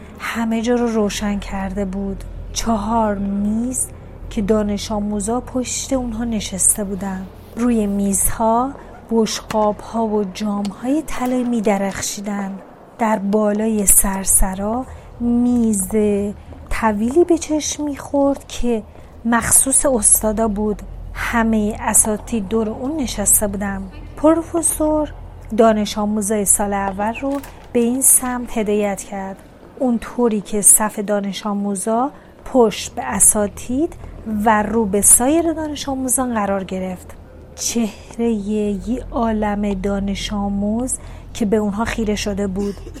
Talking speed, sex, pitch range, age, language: 110 wpm, female, 205-245 Hz, 30-49, Persian